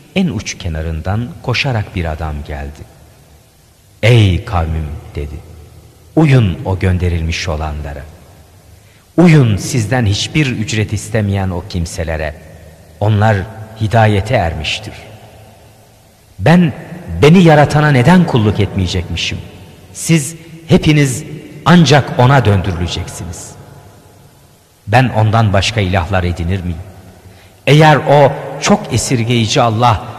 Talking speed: 90 wpm